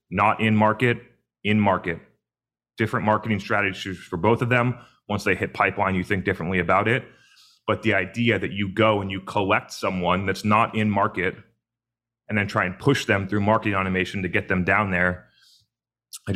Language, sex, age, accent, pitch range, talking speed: English, male, 30-49, American, 95-110 Hz, 185 wpm